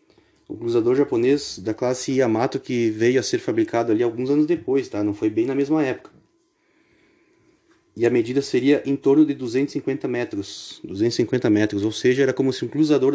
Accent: Brazilian